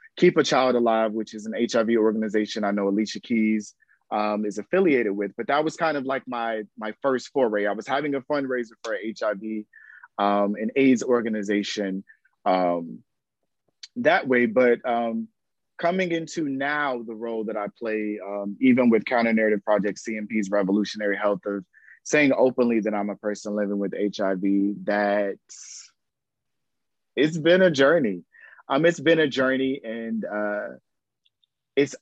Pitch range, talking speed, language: 105-125 Hz, 155 wpm, English